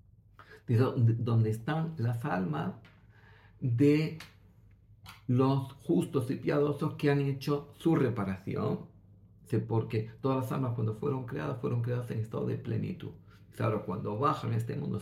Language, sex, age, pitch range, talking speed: Greek, male, 50-69, 105-140 Hz, 130 wpm